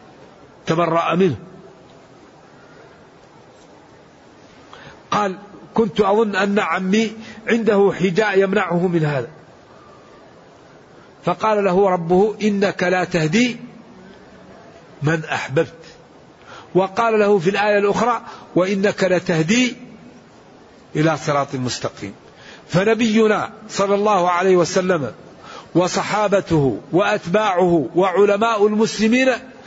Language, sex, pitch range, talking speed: Arabic, male, 185-225 Hz, 80 wpm